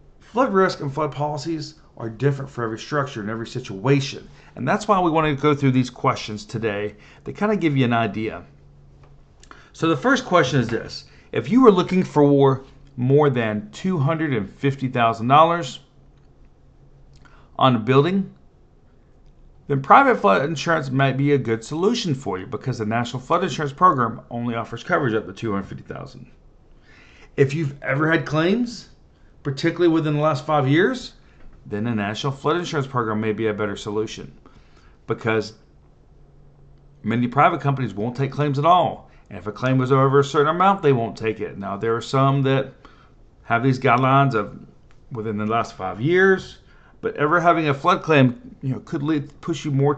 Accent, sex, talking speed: American, male, 170 wpm